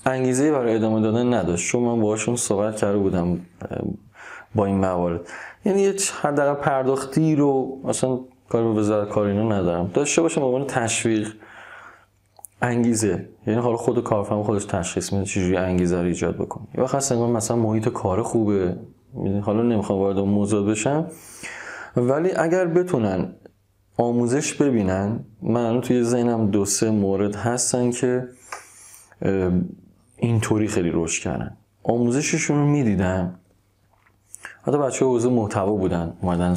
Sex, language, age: male, Persian, 20-39